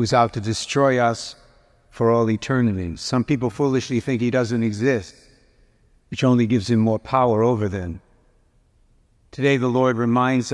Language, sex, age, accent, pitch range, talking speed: English, male, 60-79, American, 110-125 Hz, 160 wpm